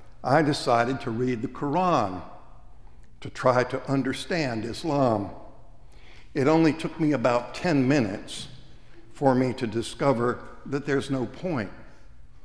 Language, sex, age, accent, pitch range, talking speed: English, male, 60-79, American, 110-140 Hz, 125 wpm